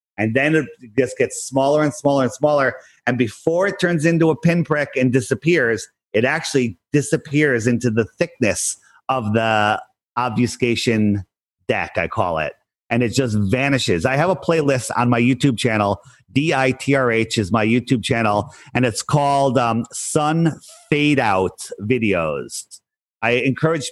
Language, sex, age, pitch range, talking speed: English, male, 40-59, 120-155 Hz, 150 wpm